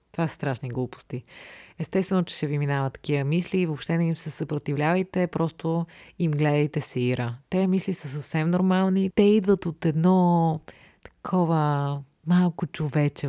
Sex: female